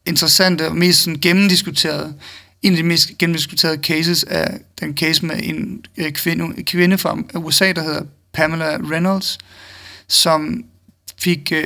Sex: male